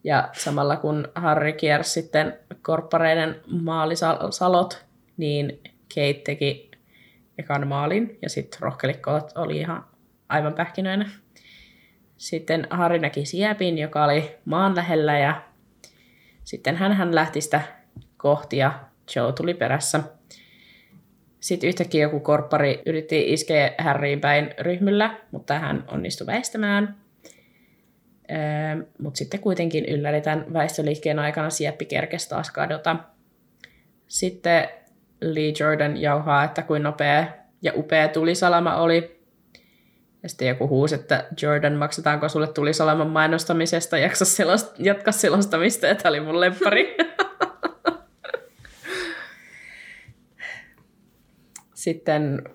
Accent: native